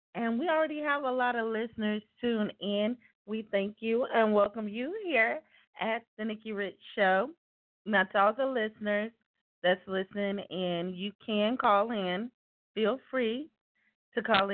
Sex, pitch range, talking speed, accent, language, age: female, 185-235 Hz, 155 wpm, American, English, 30-49